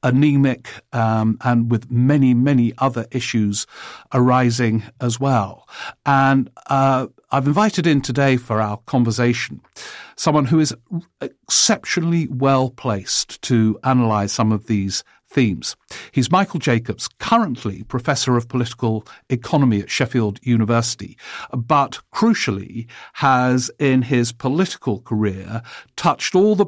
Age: 50-69